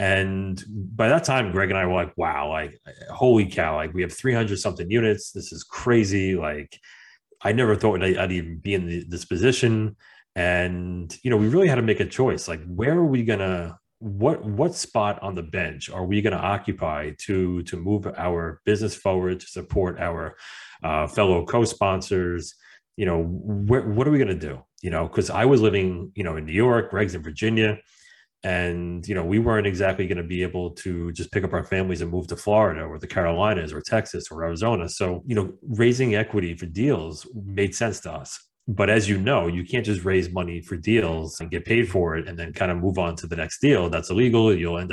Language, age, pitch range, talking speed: English, 30-49, 85-110 Hz, 220 wpm